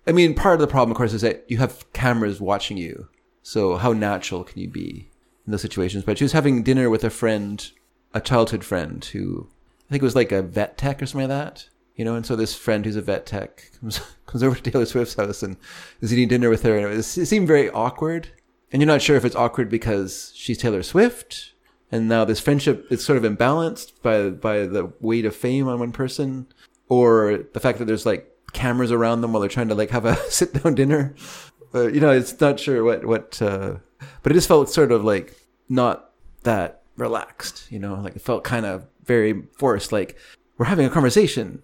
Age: 30-49